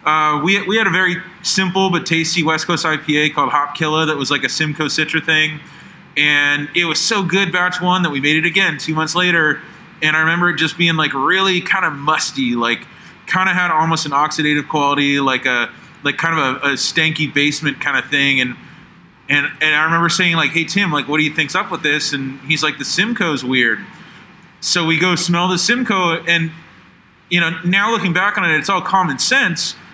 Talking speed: 215 wpm